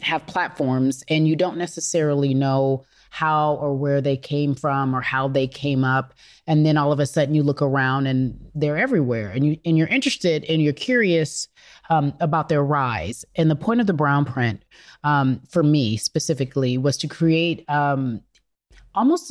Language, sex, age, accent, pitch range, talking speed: English, female, 30-49, American, 130-160 Hz, 185 wpm